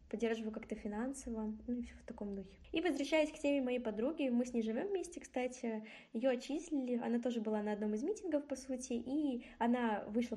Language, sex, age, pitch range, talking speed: Russian, female, 10-29, 215-260 Hz, 205 wpm